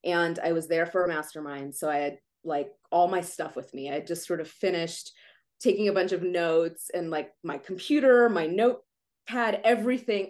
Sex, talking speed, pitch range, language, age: female, 200 wpm, 155-195 Hz, English, 20-39